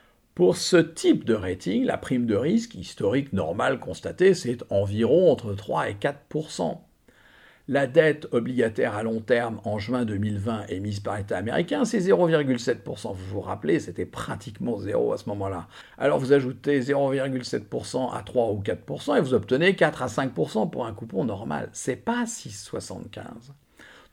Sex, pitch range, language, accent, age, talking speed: male, 105-150 Hz, English, French, 50-69, 160 wpm